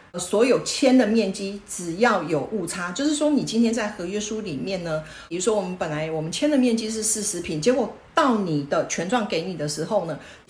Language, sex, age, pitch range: Chinese, female, 40-59, 190-255 Hz